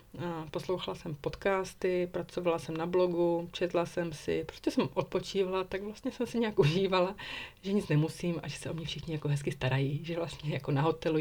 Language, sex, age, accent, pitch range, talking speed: Czech, female, 30-49, native, 160-195 Hz, 200 wpm